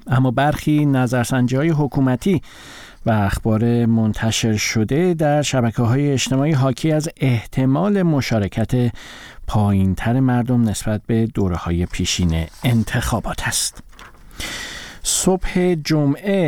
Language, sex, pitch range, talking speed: Persian, male, 110-140 Hz, 90 wpm